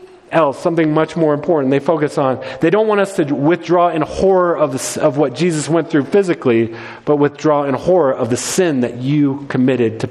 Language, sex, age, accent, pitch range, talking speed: English, male, 40-59, American, 150-195 Hz, 200 wpm